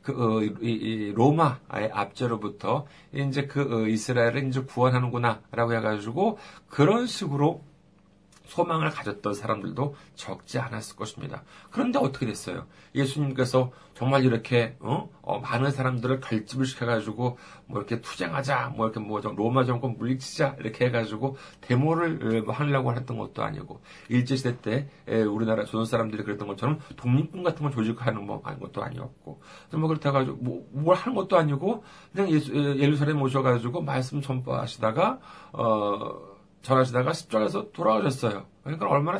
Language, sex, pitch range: Korean, male, 110-145 Hz